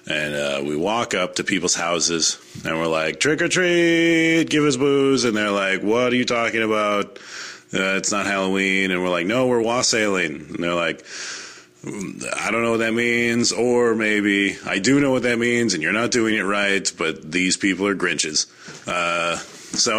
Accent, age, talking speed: American, 30-49, 190 wpm